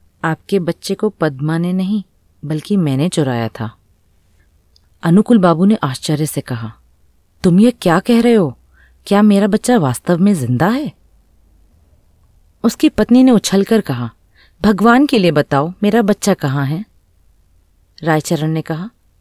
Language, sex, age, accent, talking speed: Hindi, female, 30-49, native, 140 wpm